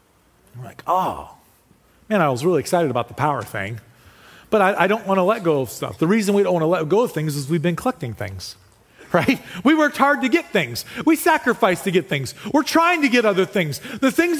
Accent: American